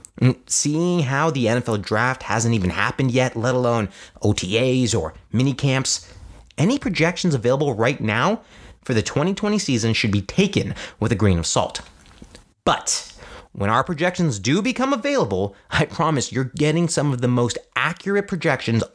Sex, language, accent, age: male, English, American, 30-49